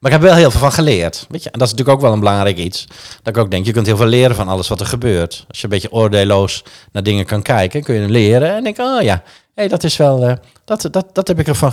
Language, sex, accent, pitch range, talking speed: Dutch, male, Dutch, 100-135 Hz, 305 wpm